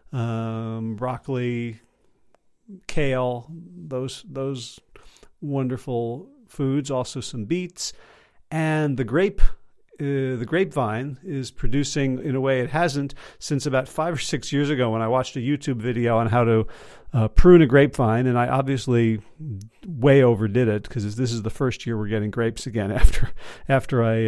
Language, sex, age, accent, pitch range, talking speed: English, male, 40-59, American, 115-145 Hz, 155 wpm